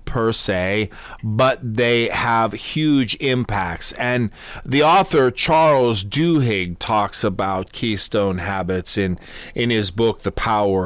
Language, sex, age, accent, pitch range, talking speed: English, male, 40-59, American, 95-140 Hz, 120 wpm